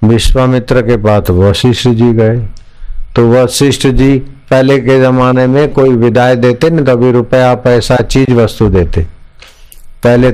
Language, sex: Hindi, male